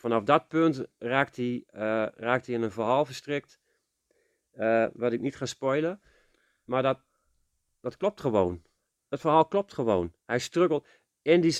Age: 40-59